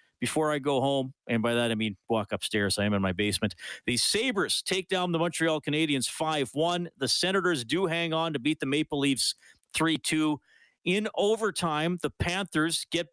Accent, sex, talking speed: American, male, 185 wpm